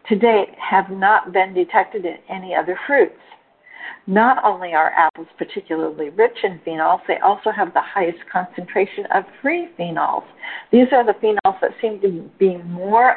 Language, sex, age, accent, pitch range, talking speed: English, female, 50-69, American, 180-250 Hz, 165 wpm